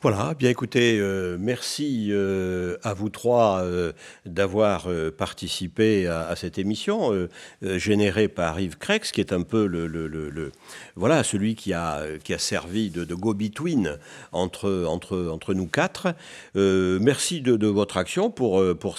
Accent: French